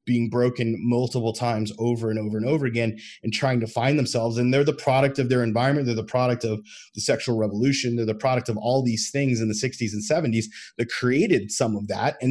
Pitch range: 115-145 Hz